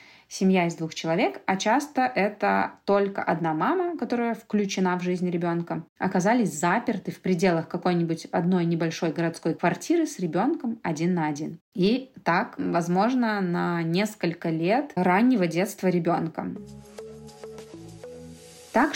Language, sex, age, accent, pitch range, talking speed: Russian, female, 20-39, native, 170-200 Hz, 125 wpm